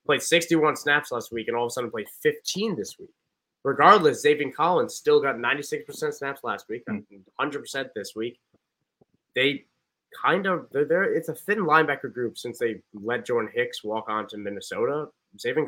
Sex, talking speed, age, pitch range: male, 185 wpm, 20-39, 110-170 Hz